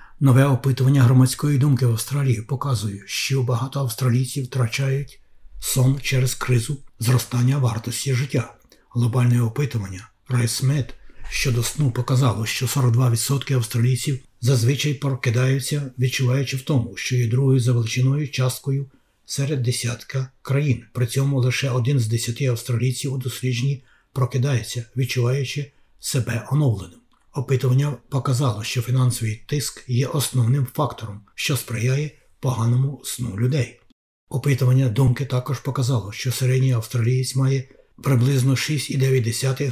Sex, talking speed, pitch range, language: male, 115 wpm, 120-135 Hz, Ukrainian